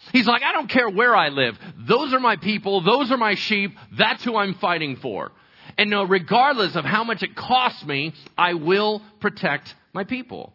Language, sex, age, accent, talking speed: English, male, 40-59, American, 200 wpm